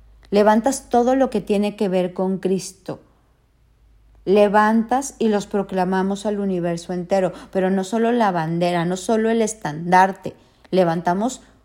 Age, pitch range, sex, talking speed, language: 50-69, 175-210 Hz, female, 135 wpm, Spanish